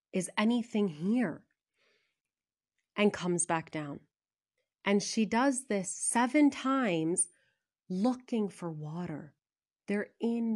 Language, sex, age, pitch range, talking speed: English, female, 30-49, 165-225 Hz, 100 wpm